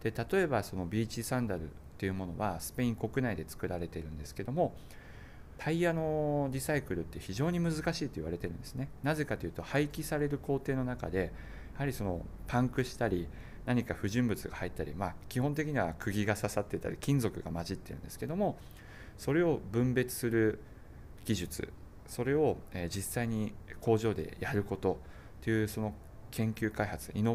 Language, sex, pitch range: Japanese, male, 85-125 Hz